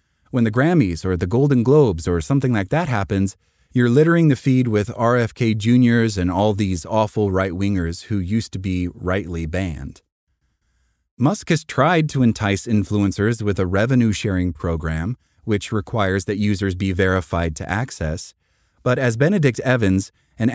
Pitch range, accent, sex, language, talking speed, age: 95-130 Hz, American, male, English, 155 wpm, 30-49